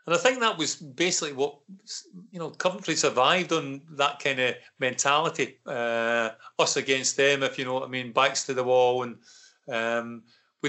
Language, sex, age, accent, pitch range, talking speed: English, male, 40-59, British, 120-140 Hz, 185 wpm